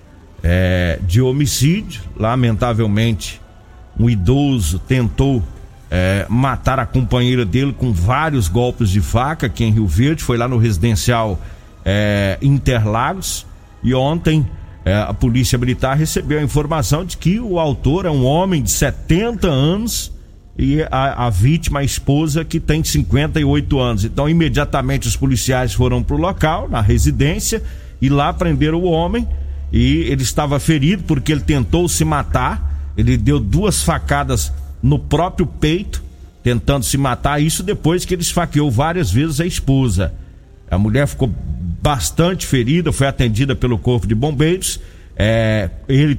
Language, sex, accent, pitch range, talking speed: Portuguese, male, Brazilian, 105-155 Hz, 140 wpm